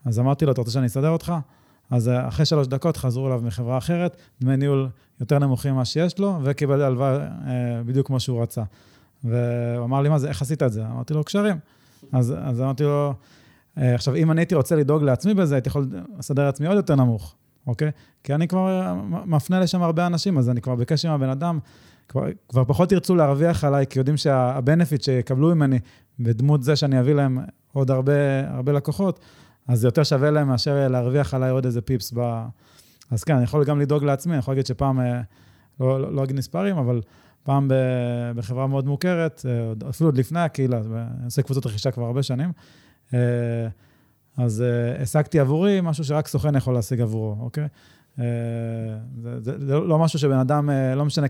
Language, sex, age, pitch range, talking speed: Hebrew, male, 30-49, 125-150 Hz, 175 wpm